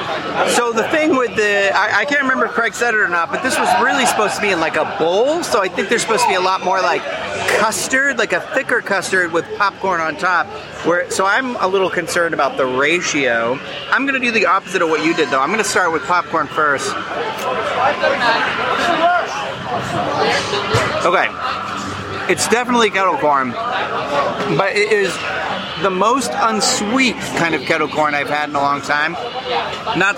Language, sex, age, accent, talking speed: English, male, 30-49, American, 190 wpm